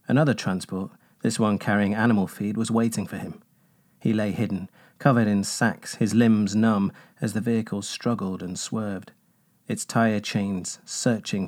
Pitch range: 100-120 Hz